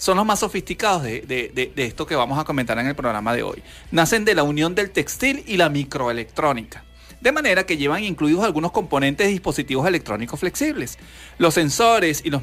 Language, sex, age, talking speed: Spanish, male, 40-59, 200 wpm